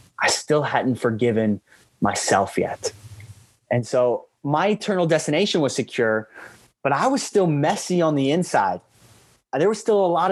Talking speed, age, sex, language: 150 wpm, 20-39, male, English